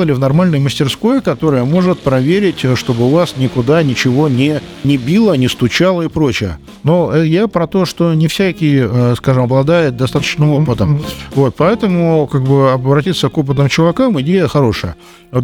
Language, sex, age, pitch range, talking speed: Russian, male, 50-69, 130-170 Hz, 150 wpm